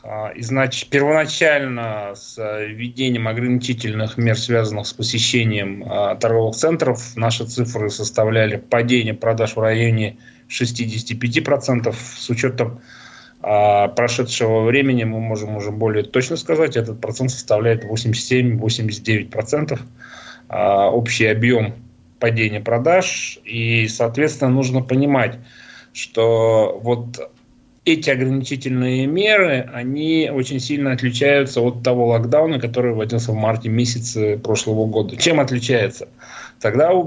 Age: 20-39